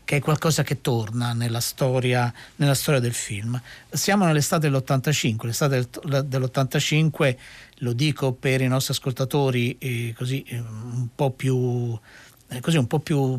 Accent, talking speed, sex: native, 145 wpm, male